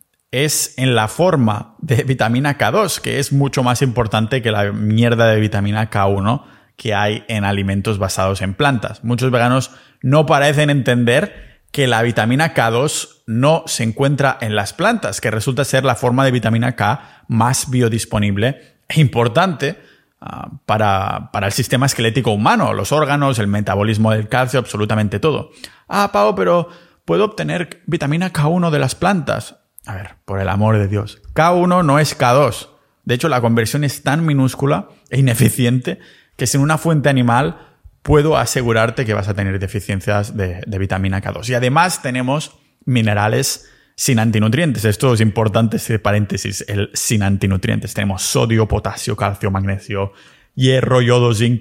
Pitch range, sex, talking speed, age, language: 105-140 Hz, male, 155 wpm, 30-49, Spanish